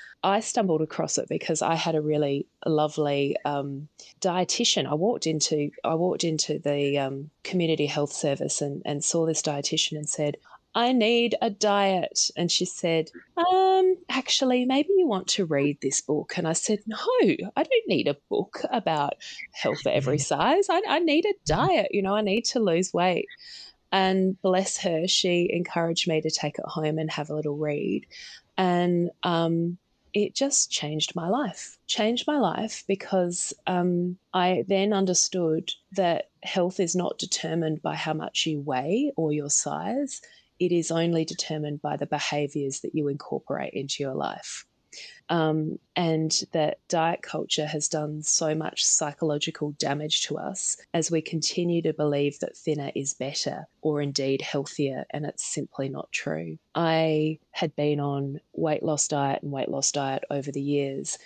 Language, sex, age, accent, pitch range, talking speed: English, female, 20-39, Australian, 145-190 Hz, 170 wpm